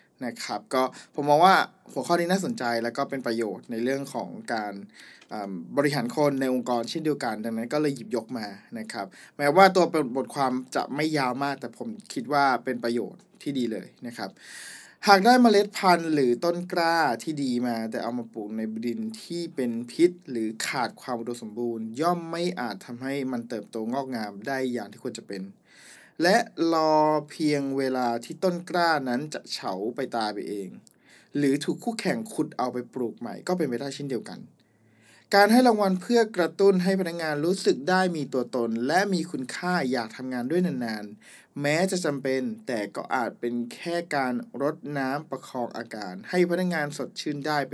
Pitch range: 120-175 Hz